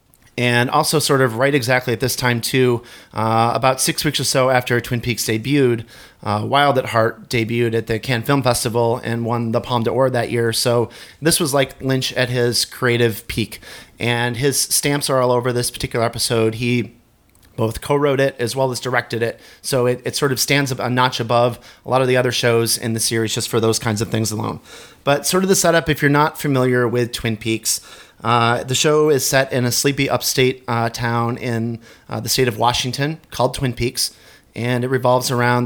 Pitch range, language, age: 115-130 Hz, English, 30-49